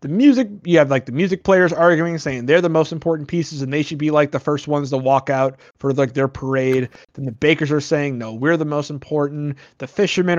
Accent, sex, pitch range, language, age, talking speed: American, male, 135-180 Hz, English, 30-49, 245 wpm